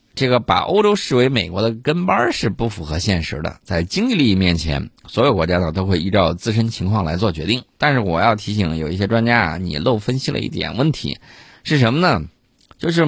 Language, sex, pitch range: Chinese, male, 90-125 Hz